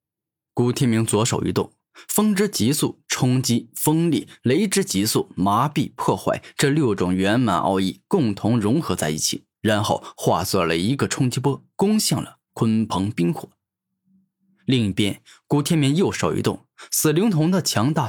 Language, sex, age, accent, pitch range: Chinese, male, 10-29, native, 105-145 Hz